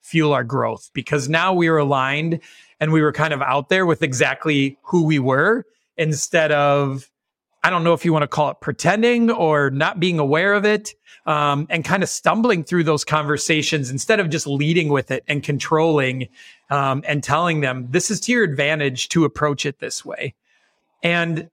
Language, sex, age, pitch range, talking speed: English, male, 30-49, 140-170 Hz, 190 wpm